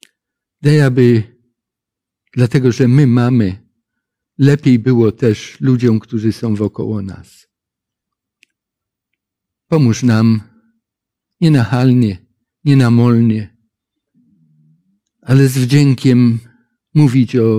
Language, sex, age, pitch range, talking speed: Polish, male, 50-69, 115-135 Hz, 90 wpm